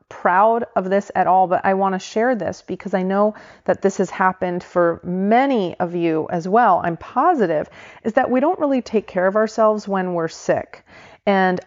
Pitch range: 165-205 Hz